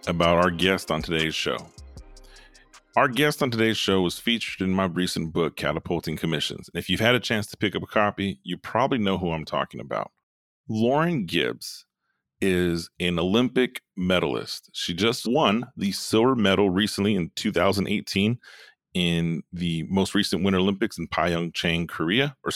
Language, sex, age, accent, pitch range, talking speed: English, male, 30-49, American, 90-105 Hz, 160 wpm